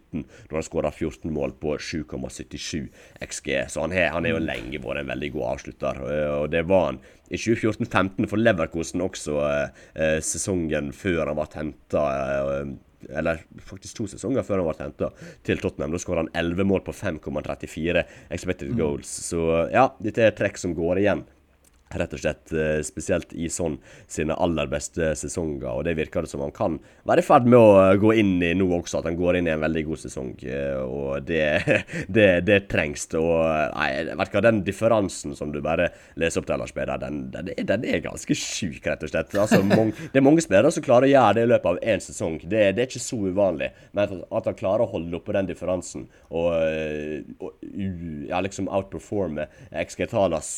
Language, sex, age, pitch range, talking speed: English, male, 30-49, 75-95 Hz, 175 wpm